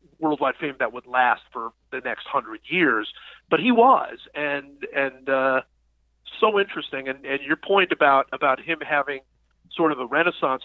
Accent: American